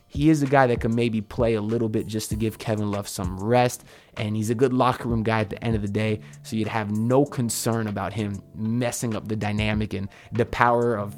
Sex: male